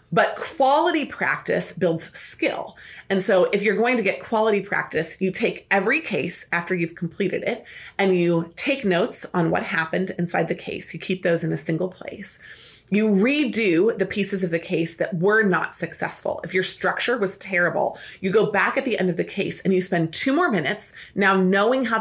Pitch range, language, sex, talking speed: 175-215 Hz, English, female, 200 wpm